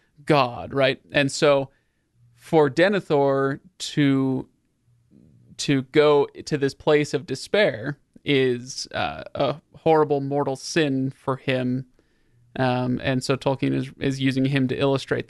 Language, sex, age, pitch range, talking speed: English, male, 30-49, 130-155 Hz, 125 wpm